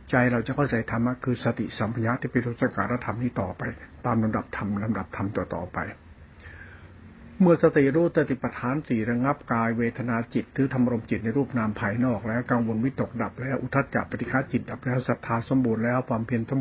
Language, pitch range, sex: Thai, 115-130 Hz, male